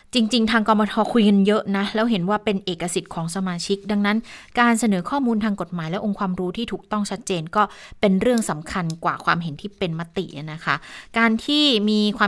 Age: 20-39